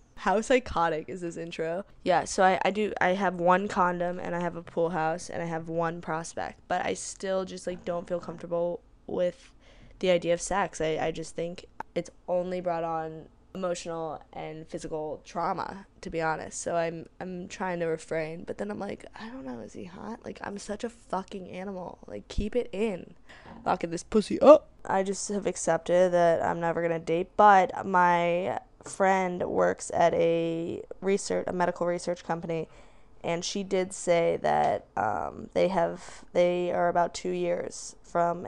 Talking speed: 180 wpm